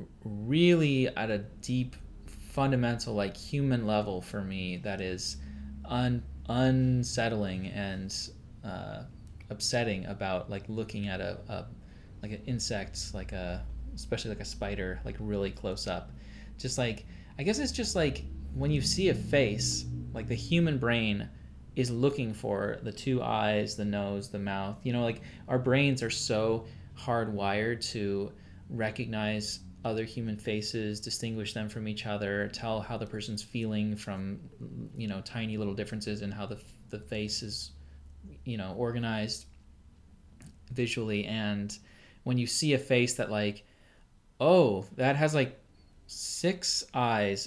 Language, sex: English, male